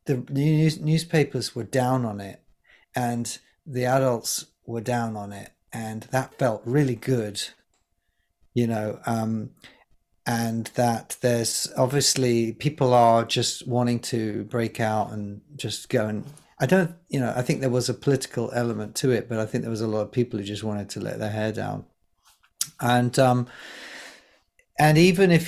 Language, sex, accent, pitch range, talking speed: English, male, British, 110-130 Hz, 165 wpm